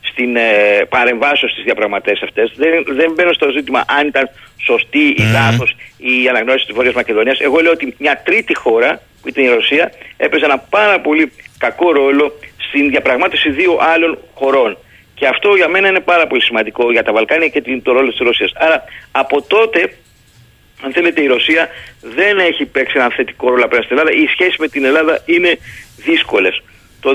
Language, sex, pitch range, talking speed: Greek, male, 130-175 Hz, 180 wpm